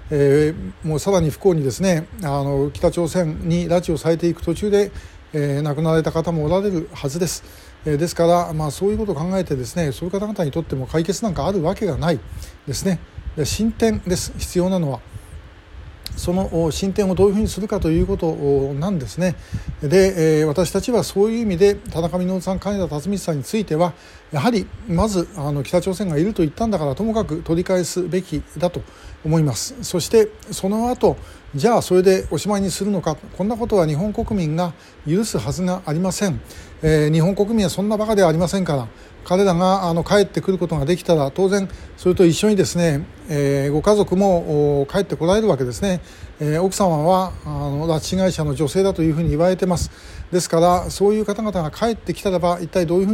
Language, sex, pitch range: Japanese, male, 155-195 Hz